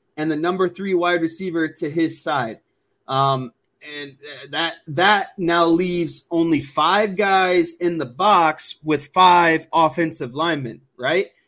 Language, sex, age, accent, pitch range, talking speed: English, male, 20-39, American, 150-180 Hz, 135 wpm